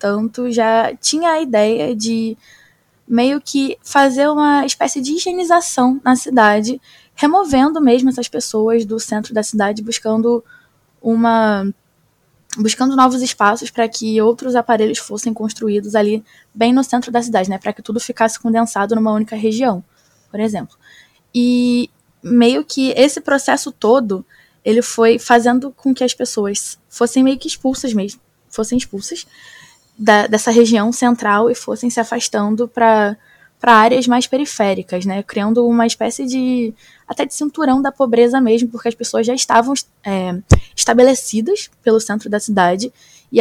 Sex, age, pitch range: female, 10-29, 210-245 Hz